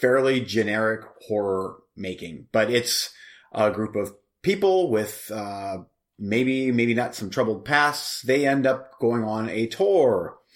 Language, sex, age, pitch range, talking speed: English, male, 30-49, 105-130 Hz, 140 wpm